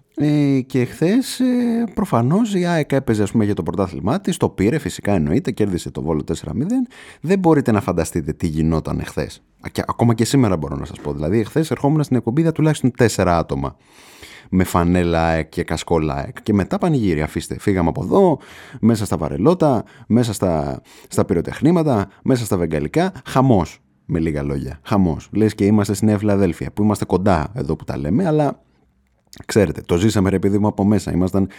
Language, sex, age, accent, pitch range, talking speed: Greek, male, 30-49, native, 85-135 Hz, 175 wpm